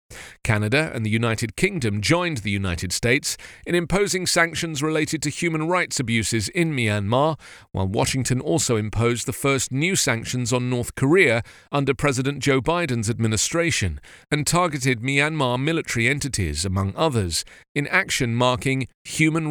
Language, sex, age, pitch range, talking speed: English, male, 40-59, 110-155 Hz, 140 wpm